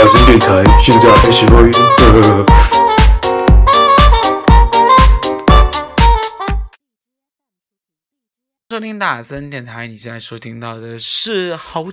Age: 20-39